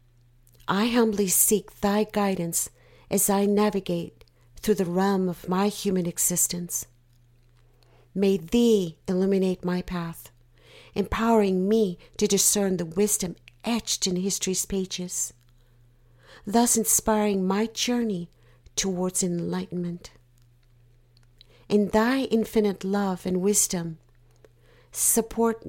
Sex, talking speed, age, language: female, 100 wpm, 50-69, English